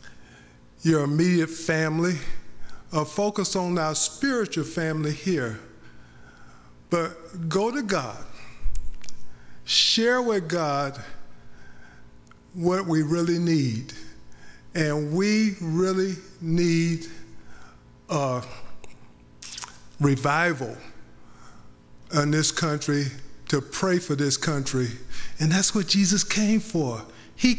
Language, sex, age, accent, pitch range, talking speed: English, male, 50-69, American, 125-185 Hz, 90 wpm